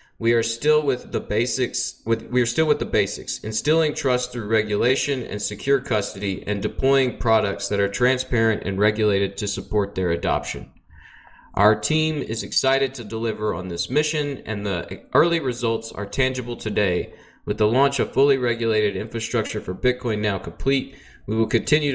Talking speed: 170 wpm